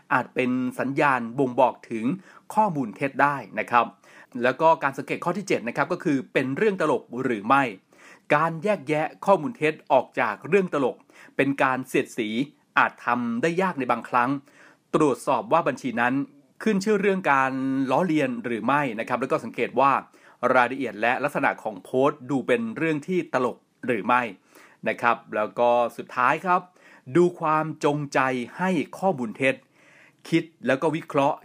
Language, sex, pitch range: Thai, male, 125-175 Hz